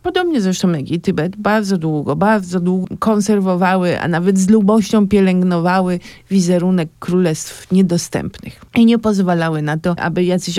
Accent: native